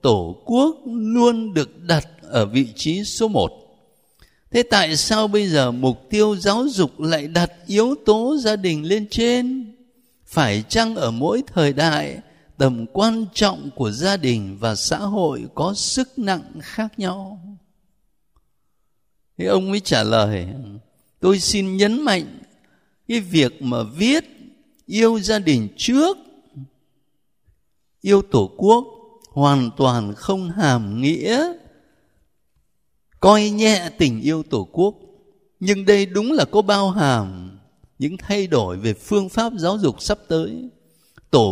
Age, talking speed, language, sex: 60-79, 140 wpm, Vietnamese, male